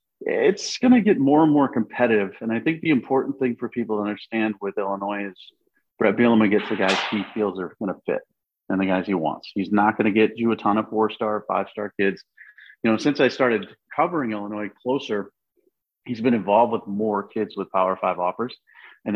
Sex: male